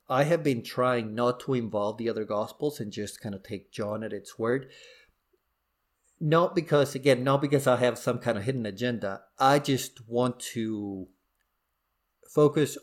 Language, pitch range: English, 110-140 Hz